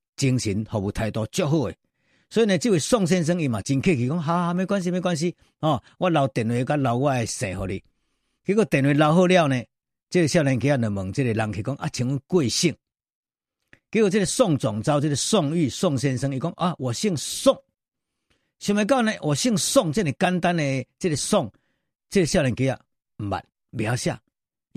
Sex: male